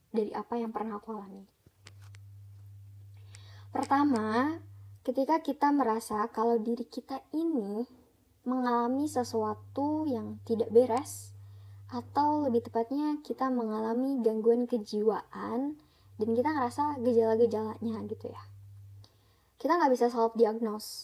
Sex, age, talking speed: male, 20-39, 105 wpm